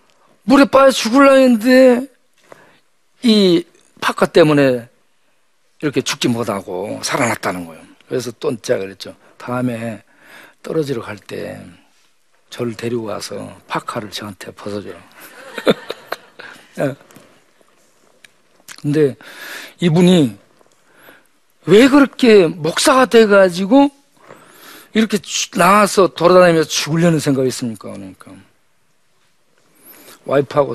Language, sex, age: Korean, male, 50-69